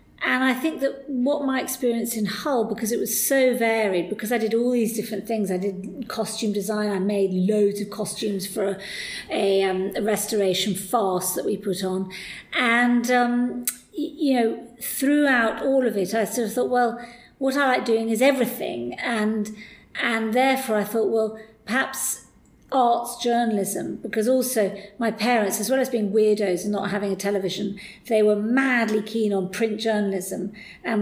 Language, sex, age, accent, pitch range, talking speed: English, female, 50-69, British, 200-235 Hz, 175 wpm